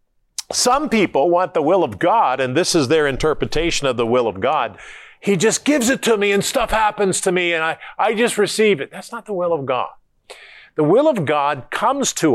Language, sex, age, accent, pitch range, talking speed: English, male, 50-69, American, 130-185 Hz, 225 wpm